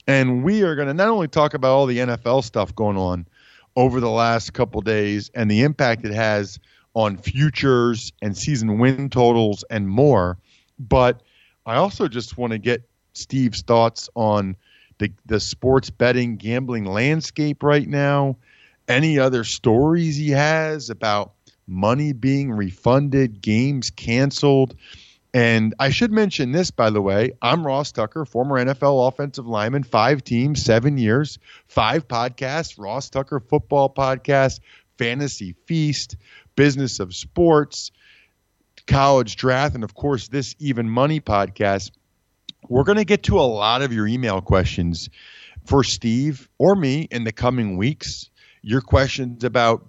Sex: male